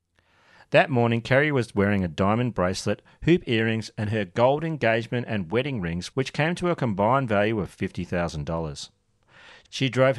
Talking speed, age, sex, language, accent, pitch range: 160 wpm, 40-59, male, English, Australian, 95-135 Hz